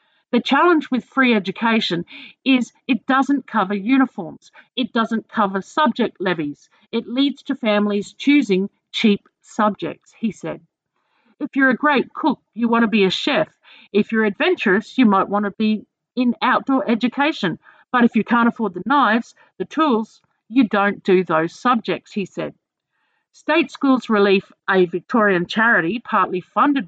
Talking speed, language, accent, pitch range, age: 155 wpm, English, Australian, 195-265 Hz, 50-69